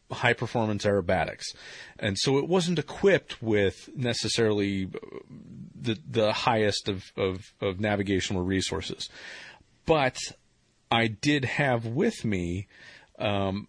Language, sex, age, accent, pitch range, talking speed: English, male, 40-59, American, 100-135 Hz, 110 wpm